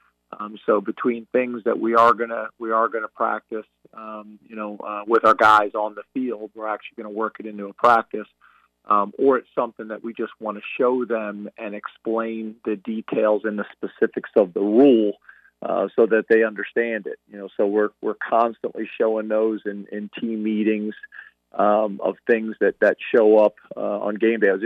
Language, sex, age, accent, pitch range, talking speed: English, male, 40-59, American, 105-115 Hz, 200 wpm